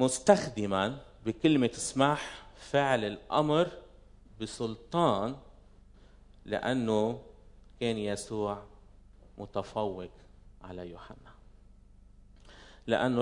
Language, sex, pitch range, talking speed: Arabic, male, 100-135 Hz, 60 wpm